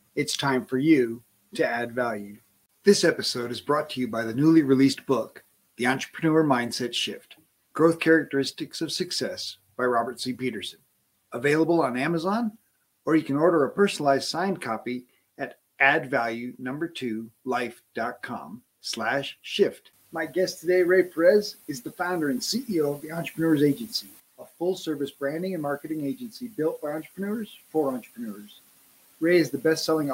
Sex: male